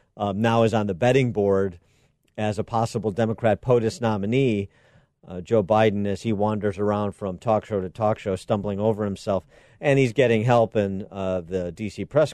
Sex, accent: male, American